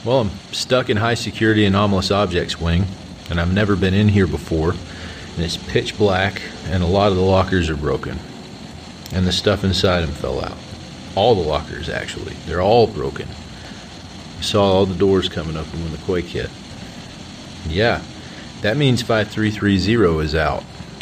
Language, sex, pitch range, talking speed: English, male, 85-105 Hz, 165 wpm